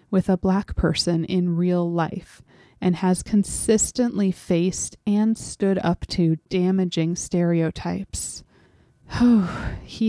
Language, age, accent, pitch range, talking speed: English, 30-49, American, 170-210 Hz, 115 wpm